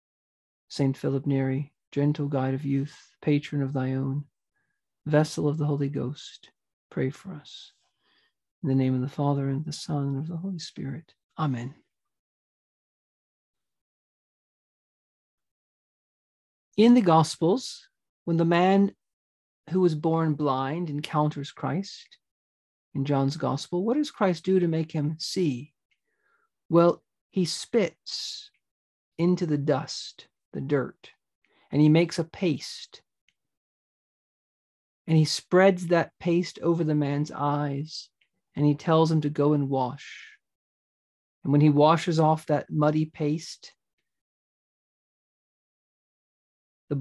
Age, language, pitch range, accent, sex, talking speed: 50-69, English, 140-175 Hz, American, male, 125 wpm